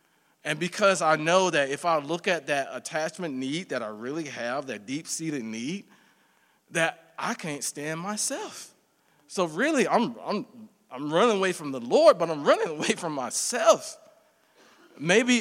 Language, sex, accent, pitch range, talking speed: English, male, American, 135-200 Hz, 160 wpm